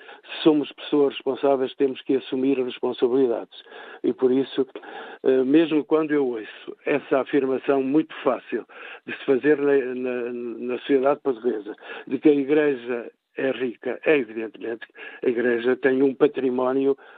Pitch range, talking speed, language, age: 125-145 Hz, 135 wpm, Portuguese, 60-79